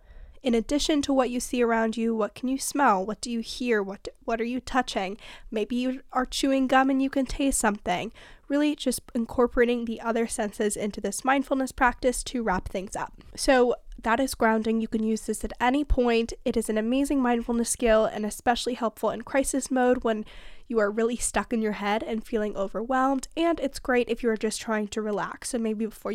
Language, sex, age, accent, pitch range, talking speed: English, female, 10-29, American, 215-255 Hz, 210 wpm